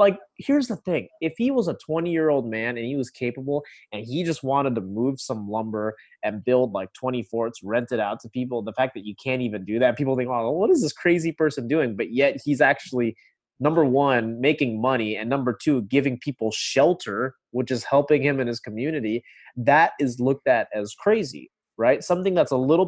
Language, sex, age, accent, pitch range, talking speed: English, male, 20-39, American, 115-150 Hz, 220 wpm